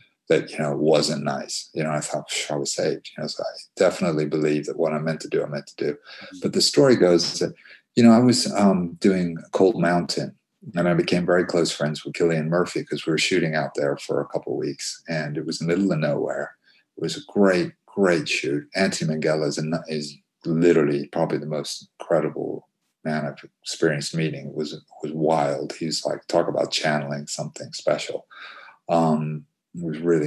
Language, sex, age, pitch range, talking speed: English, male, 40-59, 75-105 Hz, 205 wpm